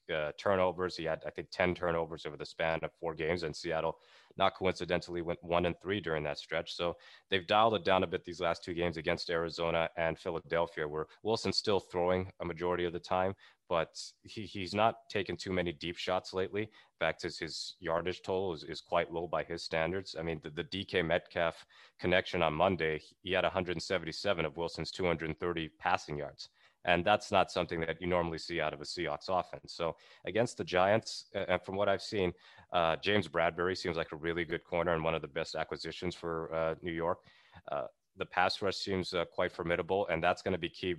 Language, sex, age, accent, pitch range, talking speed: English, male, 30-49, American, 80-90 Hz, 210 wpm